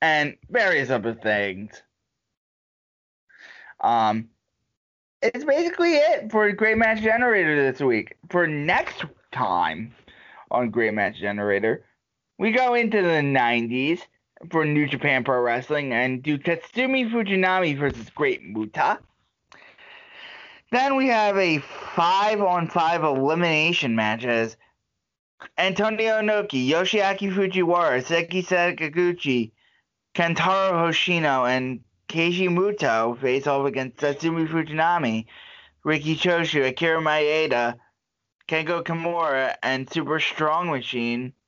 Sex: male